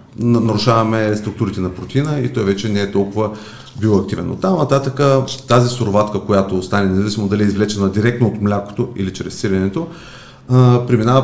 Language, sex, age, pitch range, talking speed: Bulgarian, male, 30-49, 100-125 Hz, 155 wpm